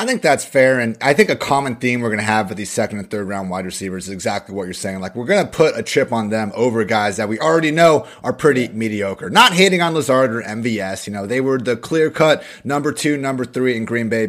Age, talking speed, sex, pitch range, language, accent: 30-49, 270 wpm, male, 110-155 Hz, English, American